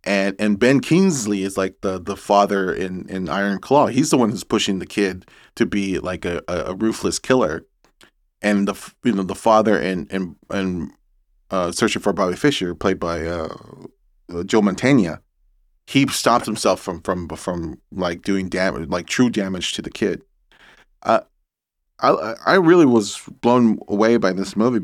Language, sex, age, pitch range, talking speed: English, male, 30-49, 95-115 Hz, 175 wpm